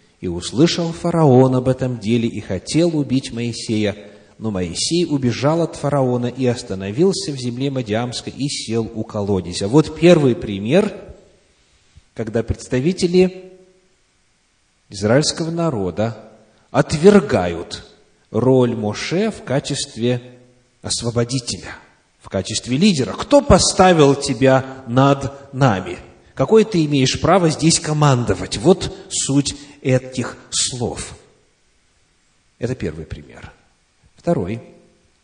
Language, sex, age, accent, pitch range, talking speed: Russian, male, 30-49, native, 110-150 Hz, 100 wpm